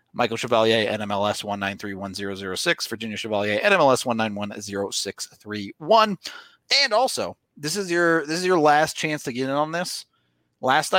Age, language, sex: 30-49, English, male